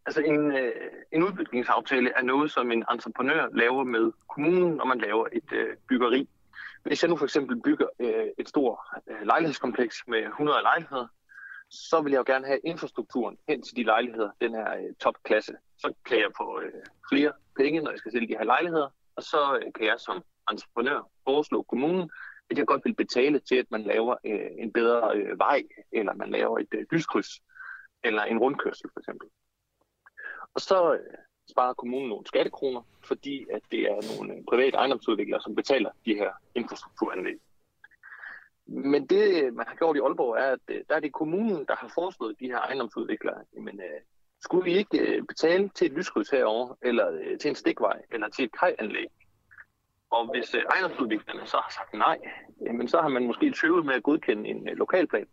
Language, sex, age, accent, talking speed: Danish, male, 30-49, native, 180 wpm